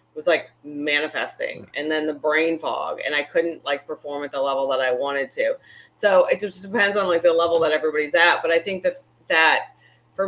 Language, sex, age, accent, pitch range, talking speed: English, female, 30-49, American, 145-175 Hz, 215 wpm